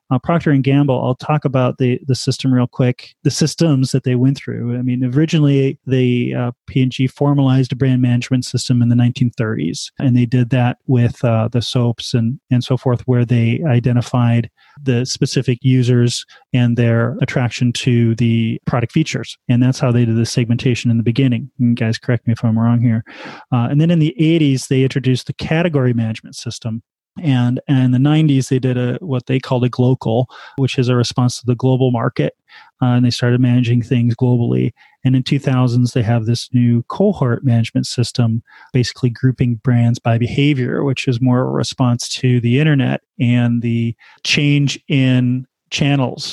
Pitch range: 120-135 Hz